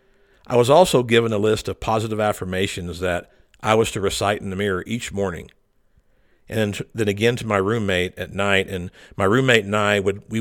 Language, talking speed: English, 195 wpm